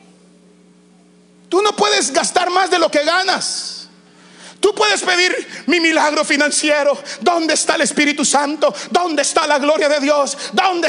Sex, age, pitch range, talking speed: male, 40-59, 210-295 Hz, 150 wpm